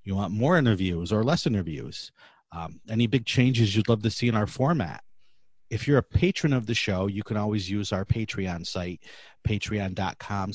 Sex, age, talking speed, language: male, 30-49, 190 wpm, English